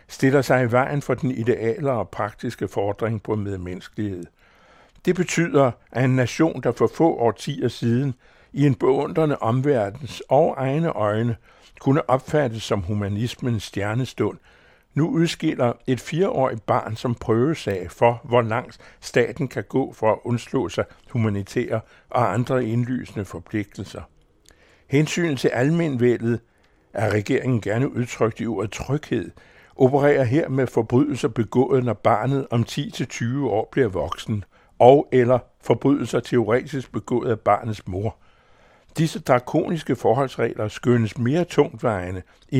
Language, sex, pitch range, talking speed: Danish, male, 110-135 Hz, 130 wpm